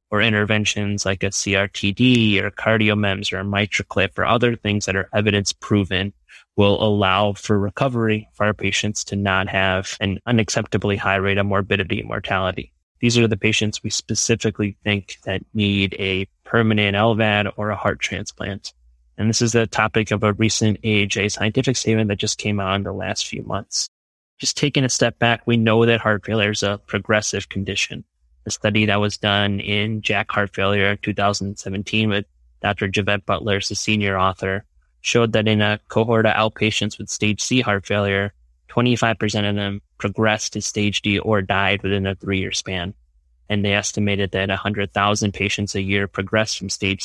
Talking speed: 175 wpm